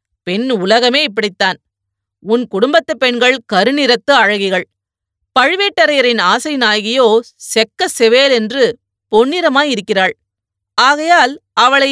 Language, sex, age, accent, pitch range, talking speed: Tamil, female, 30-49, native, 190-285 Hz, 85 wpm